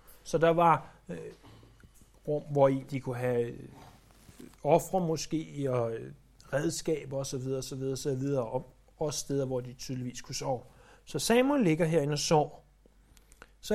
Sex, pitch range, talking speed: male, 135-185 Hz, 150 wpm